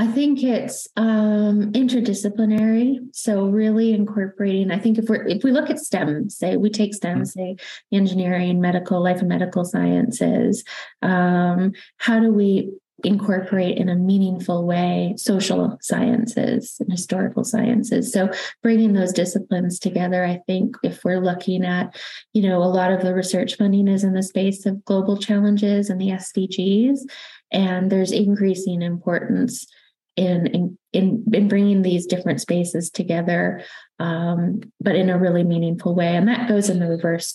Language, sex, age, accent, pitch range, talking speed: English, female, 20-39, American, 180-215 Hz, 155 wpm